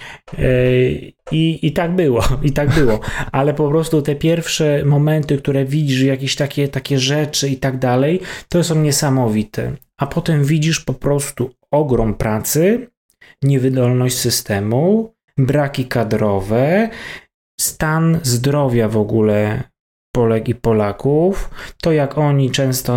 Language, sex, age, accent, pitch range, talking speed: Polish, male, 20-39, native, 120-145 Hz, 125 wpm